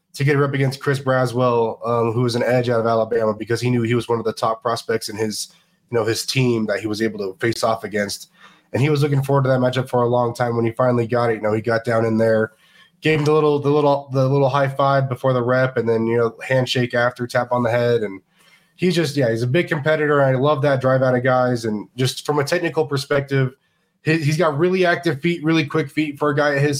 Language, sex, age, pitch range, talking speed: English, male, 20-39, 120-145 Hz, 270 wpm